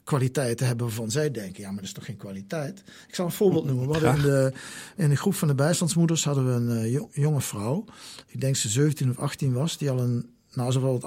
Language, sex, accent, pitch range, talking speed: Dutch, male, Dutch, 115-150 Hz, 250 wpm